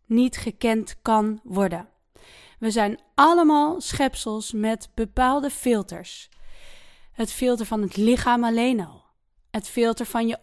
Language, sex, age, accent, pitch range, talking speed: English, female, 20-39, Dutch, 210-265 Hz, 125 wpm